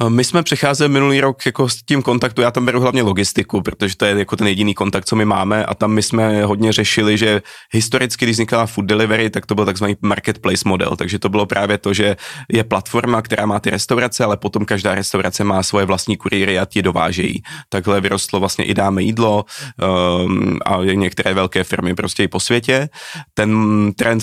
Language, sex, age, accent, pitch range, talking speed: Czech, male, 30-49, native, 100-110 Hz, 205 wpm